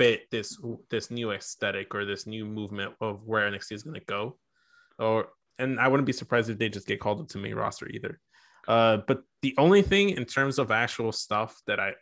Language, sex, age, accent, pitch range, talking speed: English, male, 20-39, American, 110-135 Hz, 210 wpm